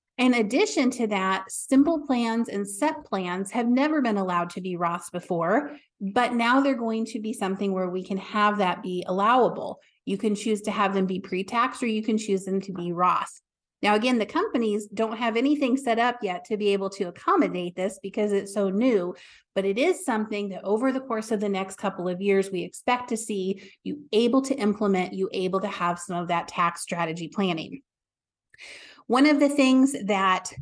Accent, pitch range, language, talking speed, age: American, 190-250 Hz, English, 205 wpm, 30-49